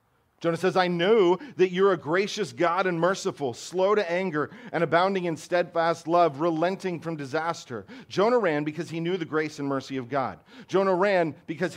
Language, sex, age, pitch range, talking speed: English, male, 40-59, 130-180 Hz, 185 wpm